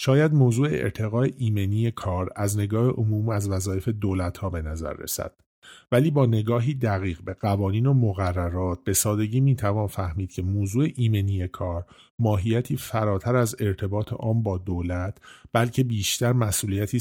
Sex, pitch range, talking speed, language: male, 95-120 Hz, 150 wpm, Persian